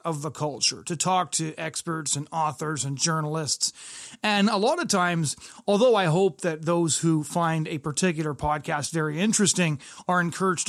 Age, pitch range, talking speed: 30-49, 155-185 Hz, 170 wpm